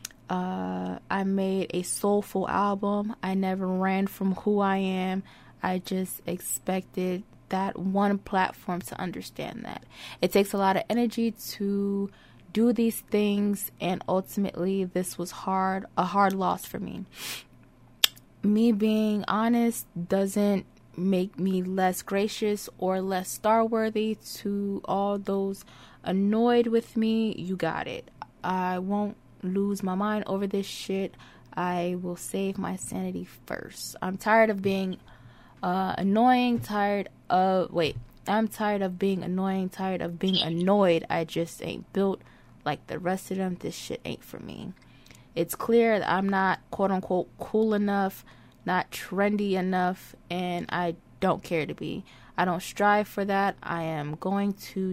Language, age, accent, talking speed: English, 20-39, American, 150 wpm